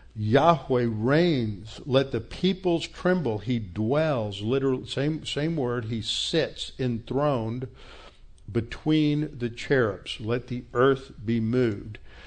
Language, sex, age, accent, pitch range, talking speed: English, male, 60-79, American, 115-140 Hz, 115 wpm